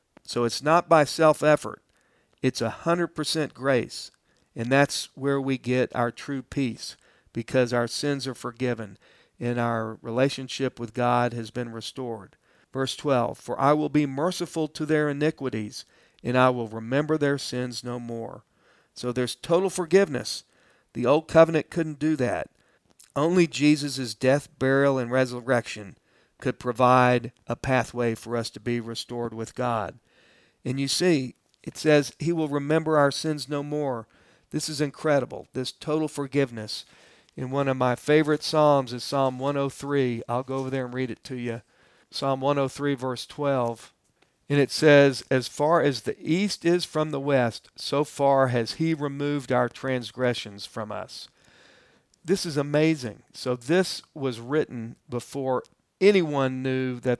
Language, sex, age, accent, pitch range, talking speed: English, male, 50-69, American, 120-150 Hz, 155 wpm